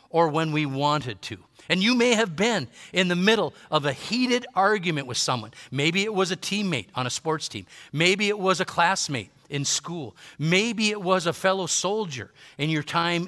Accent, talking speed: American, 200 wpm